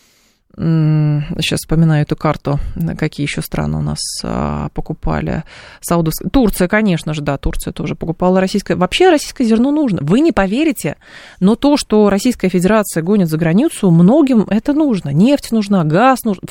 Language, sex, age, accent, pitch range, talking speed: Russian, female, 20-39, native, 160-210 Hz, 150 wpm